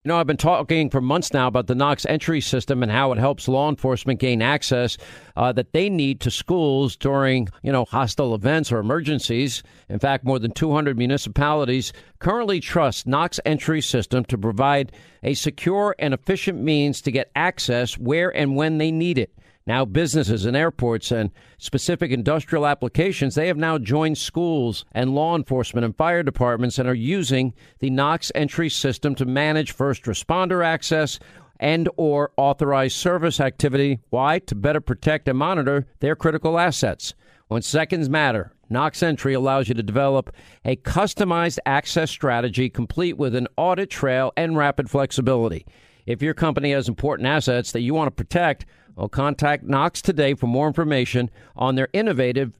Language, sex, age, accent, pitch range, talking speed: English, male, 50-69, American, 125-155 Hz, 170 wpm